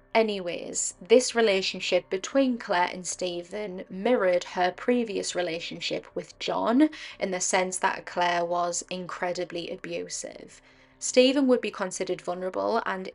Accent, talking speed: British, 125 wpm